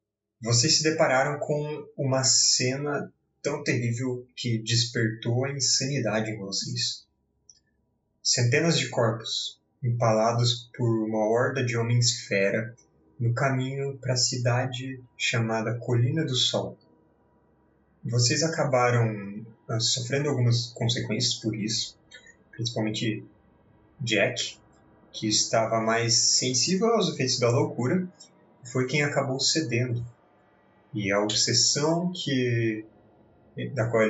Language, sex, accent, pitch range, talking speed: Portuguese, male, Brazilian, 110-130 Hz, 105 wpm